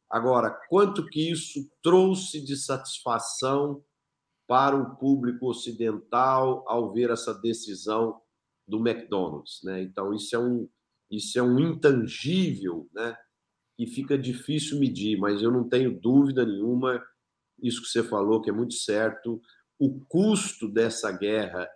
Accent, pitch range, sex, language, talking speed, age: Brazilian, 115-140 Hz, male, Portuguese, 135 wpm, 50-69